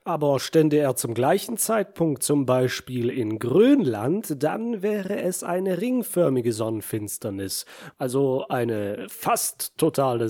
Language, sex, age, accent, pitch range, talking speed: German, male, 30-49, German, 130-190 Hz, 115 wpm